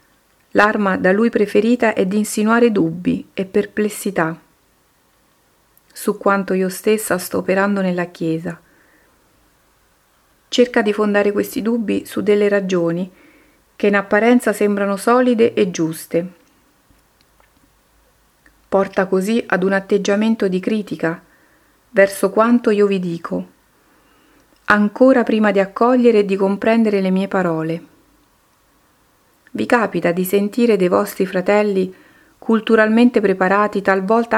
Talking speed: 115 wpm